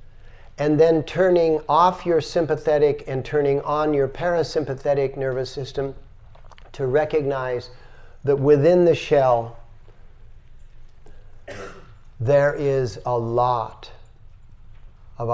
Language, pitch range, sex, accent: English, 110-140 Hz, male, American